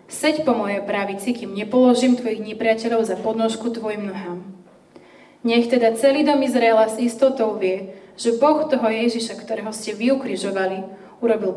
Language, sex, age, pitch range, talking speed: Slovak, female, 20-39, 210-245 Hz, 145 wpm